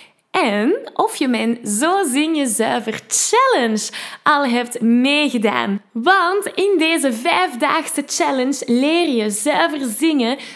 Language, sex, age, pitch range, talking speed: Dutch, female, 10-29, 220-295 Hz, 115 wpm